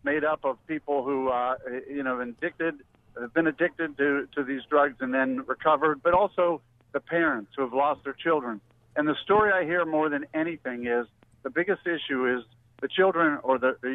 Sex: male